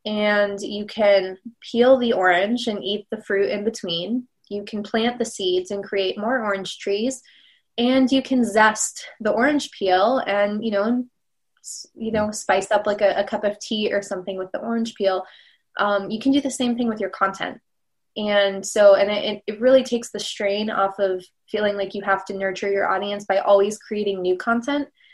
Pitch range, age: 200-235 Hz, 20-39